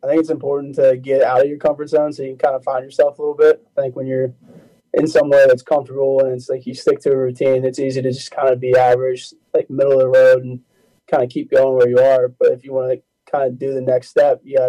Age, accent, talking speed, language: 20-39, American, 295 wpm, English